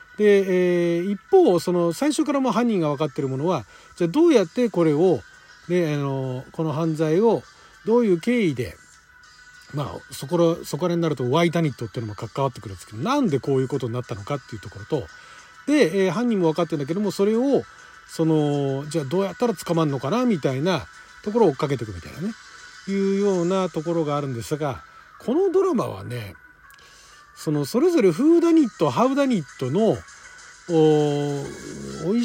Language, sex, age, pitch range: Japanese, male, 40-59, 155-250 Hz